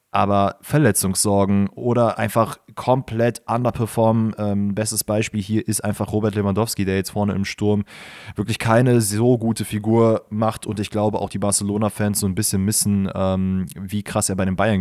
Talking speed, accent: 170 wpm, German